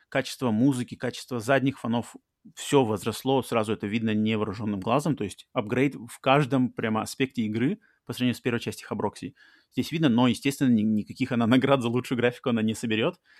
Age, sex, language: 30-49, male, Russian